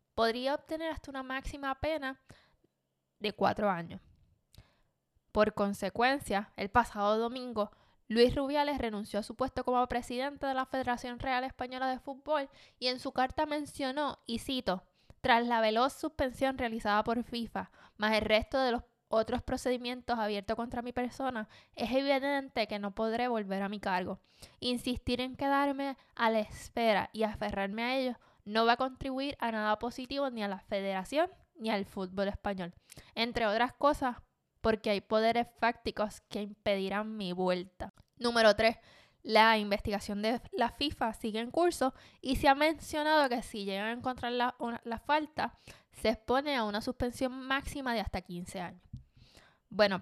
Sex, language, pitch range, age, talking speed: female, Spanish, 215-270 Hz, 10-29, 160 wpm